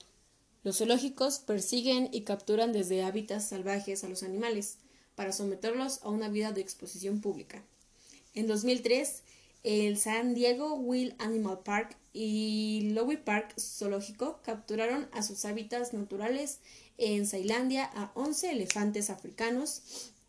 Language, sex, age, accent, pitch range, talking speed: Spanish, female, 10-29, Mexican, 200-245 Hz, 125 wpm